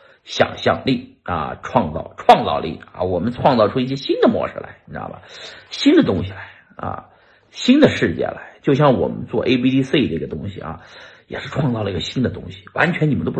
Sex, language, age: male, Chinese, 50-69